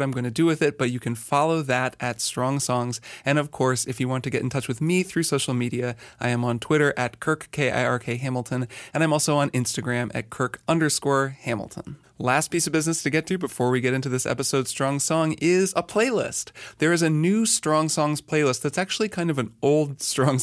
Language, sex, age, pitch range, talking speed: English, male, 20-39, 125-155 Hz, 230 wpm